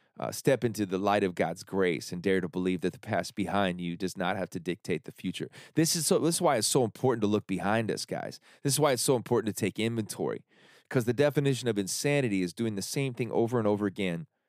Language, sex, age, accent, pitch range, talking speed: English, male, 30-49, American, 90-120 Hz, 255 wpm